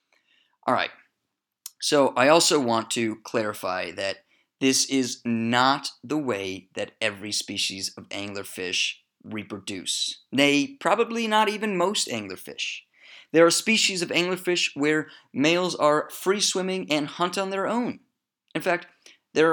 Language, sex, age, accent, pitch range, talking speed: English, male, 30-49, American, 110-175 Hz, 130 wpm